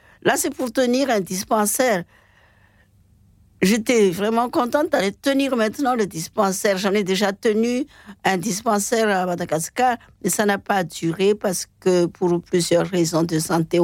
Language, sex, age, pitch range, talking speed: French, female, 60-79, 185-240 Hz, 150 wpm